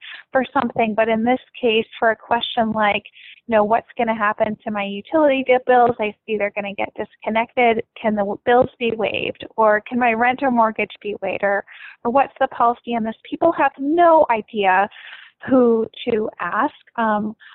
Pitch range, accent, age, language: 210-250 Hz, American, 20-39, English